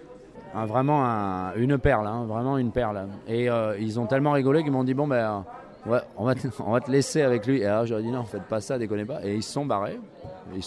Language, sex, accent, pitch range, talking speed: French, male, French, 105-135 Hz, 255 wpm